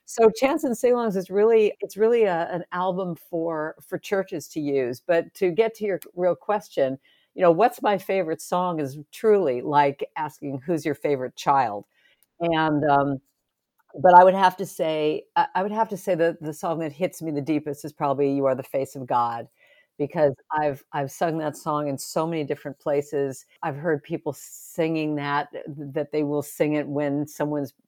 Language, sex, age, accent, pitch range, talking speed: English, female, 50-69, American, 140-175 Hz, 195 wpm